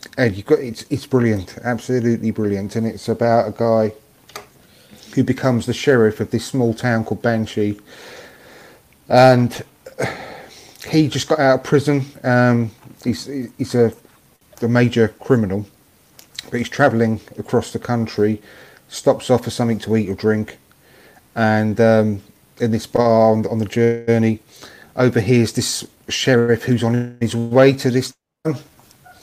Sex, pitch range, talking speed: male, 110-130 Hz, 145 wpm